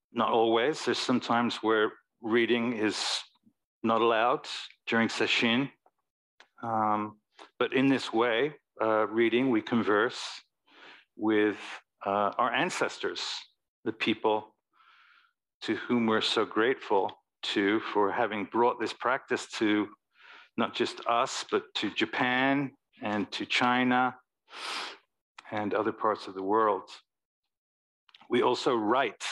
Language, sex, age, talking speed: English, male, 50-69, 115 wpm